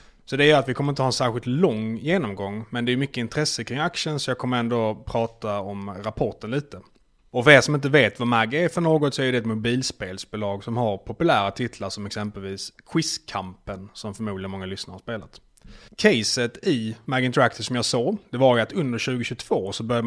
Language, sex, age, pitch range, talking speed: Swedish, male, 30-49, 105-135 Hz, 210 wpm